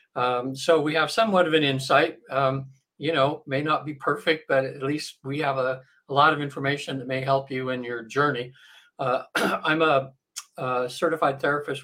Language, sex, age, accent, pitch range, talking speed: English, male, 60-79, American, 130-150 Hz, 195 wpm